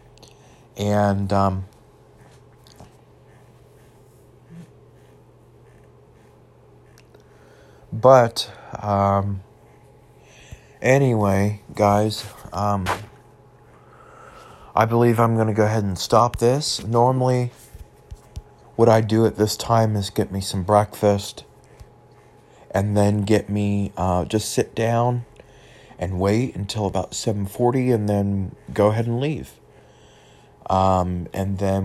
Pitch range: 95-110 Hz